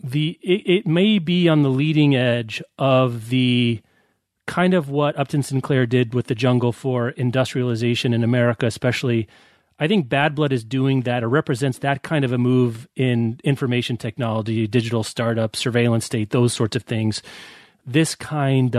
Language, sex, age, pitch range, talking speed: English, male, 30-49, 125-160 Hz, 165 wpm